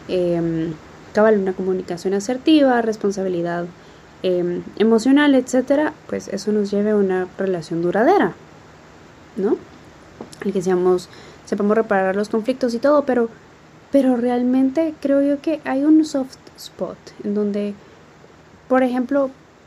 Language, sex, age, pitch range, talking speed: Spanish, female, 20-39, 215-275 Hz, 125 wpm